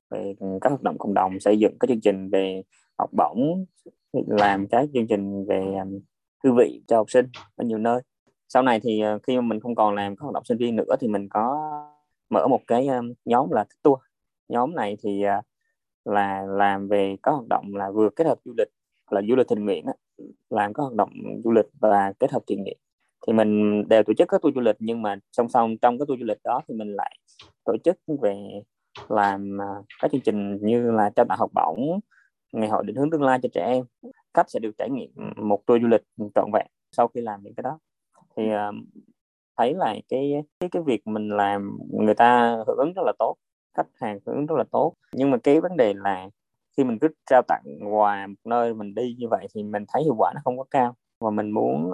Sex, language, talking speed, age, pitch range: male, Vietnamese, 230 wpm, 20-39, 100-125 Hz